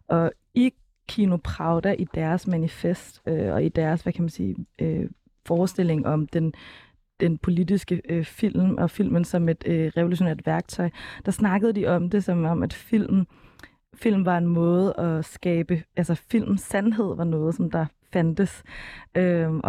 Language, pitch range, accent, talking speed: Danish, 165-185 Hz, native, 160 wpm